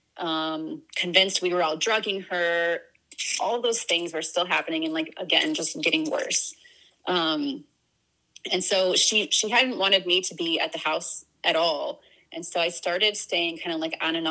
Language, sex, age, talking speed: English, female, 30-49, 185 wpm